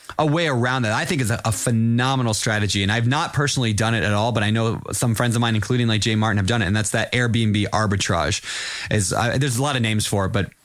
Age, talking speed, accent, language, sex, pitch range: 20-39, 260 wpm, American, English, male, 110-140 Hz